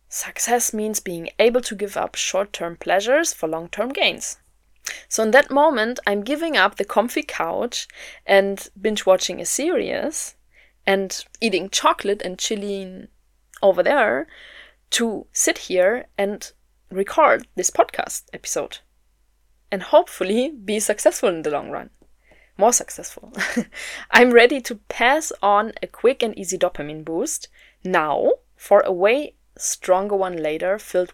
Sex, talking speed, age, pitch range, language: female, 135 wpm, 20-39, 185-270 Hz, German